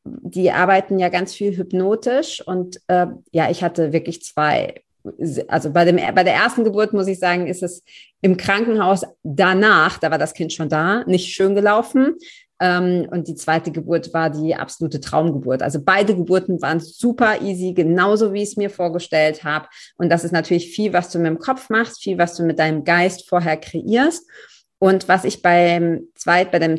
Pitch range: 175-210 Hz